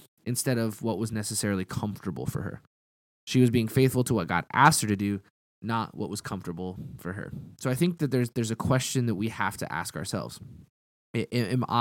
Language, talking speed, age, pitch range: English, 205 wpm, 20-39, 105-130 Hz